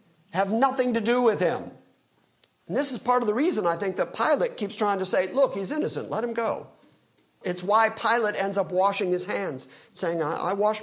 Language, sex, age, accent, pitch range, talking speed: English, male, 50-69, American, 170-255 Hz, 210 wpm